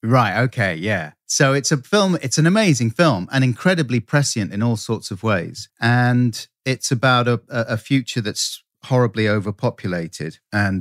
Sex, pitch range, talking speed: male, 95-120 Hz, 160 wpm